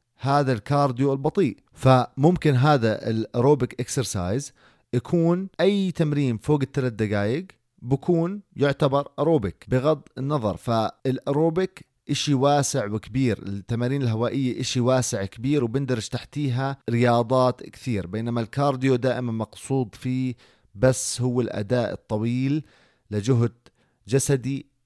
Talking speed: 100 wpm